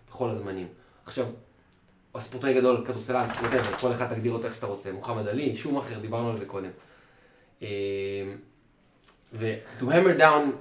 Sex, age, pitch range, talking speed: male, 20-39, 115-165 Hz, 140 wpm